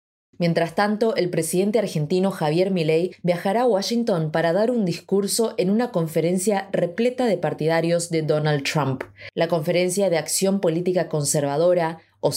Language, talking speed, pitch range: Spanish, 145 wpm, 155-190 Hz